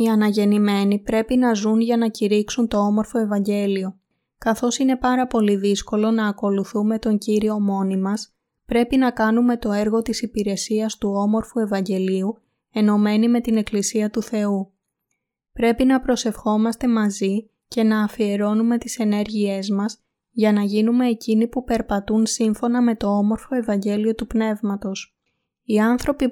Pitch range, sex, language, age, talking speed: 205-230 Hz, female, Greek, 20-39, 140 wpm